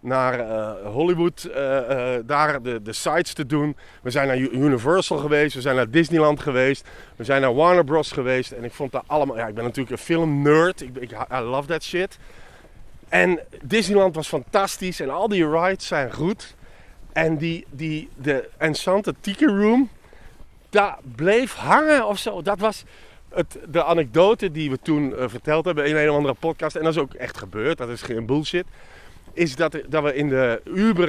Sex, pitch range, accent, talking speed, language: male, 130-180 Hz, Dutch, 195 wpm, Dutch